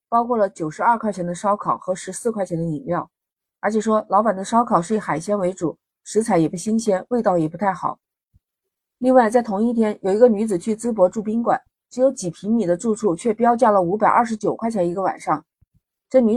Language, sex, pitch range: Chinese, female, 180-235 Hz